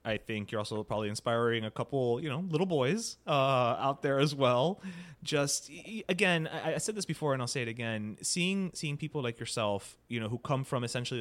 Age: 30-49